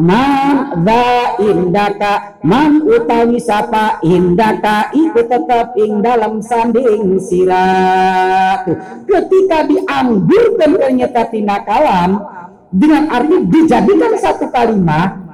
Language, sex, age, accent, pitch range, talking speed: Indonesian, female, 50-69, native, 205-330 Hz, 85 wpm